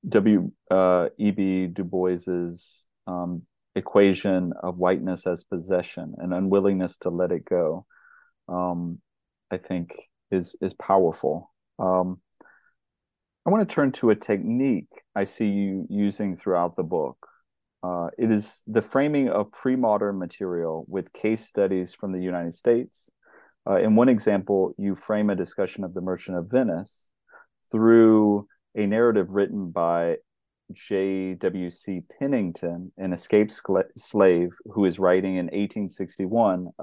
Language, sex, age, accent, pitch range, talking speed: English, male, 30-49, American, 90-110 Hz, 135 wpm